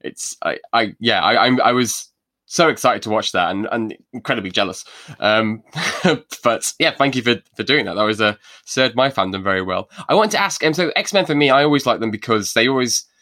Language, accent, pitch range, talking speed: English, British, 105-135 Hz, 225 wpm